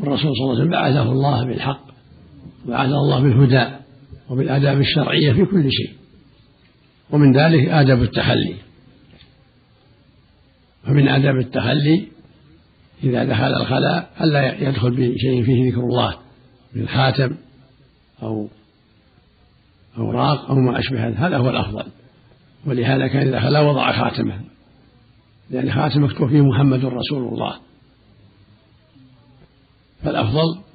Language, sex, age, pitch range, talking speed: Arabic, male, 60-79, 125-145 Hz, 110 wpm